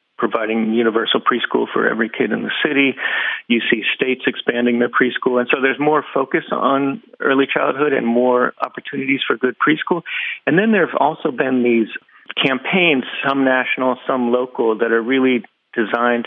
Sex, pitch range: male, 115-130 Hz